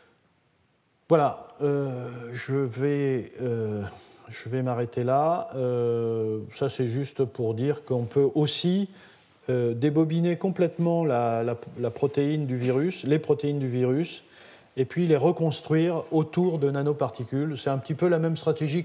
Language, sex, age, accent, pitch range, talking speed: French, male, 50-69, French, 120-155 Hz, 145 wpm